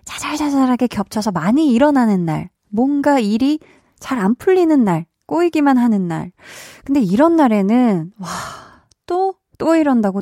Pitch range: 195-280 Hz